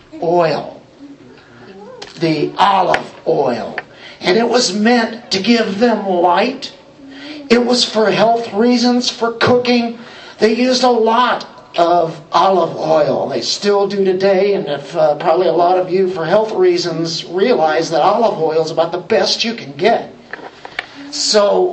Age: 50-69